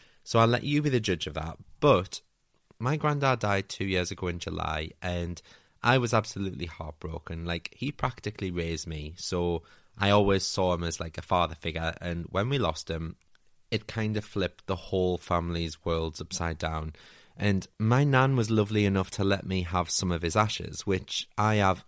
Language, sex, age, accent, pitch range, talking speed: English, male, 30-49, British, 85-110 Hz, 190 wpm